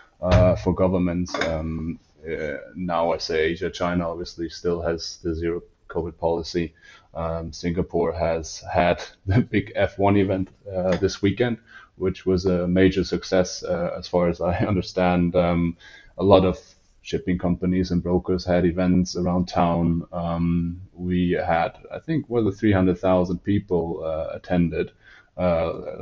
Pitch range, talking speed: 85-95 Hz, 140 wpm